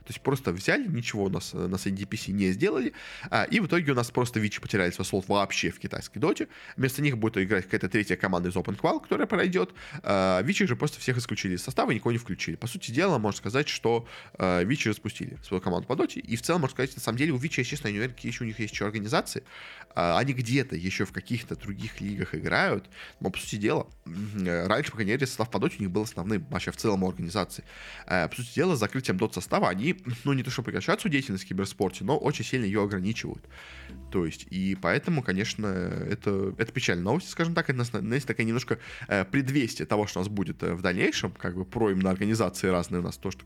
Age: 20-39